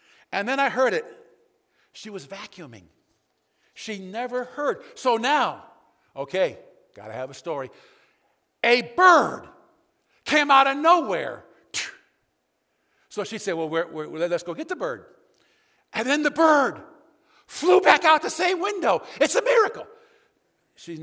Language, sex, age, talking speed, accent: English, male, 50-69, 135 wpm, American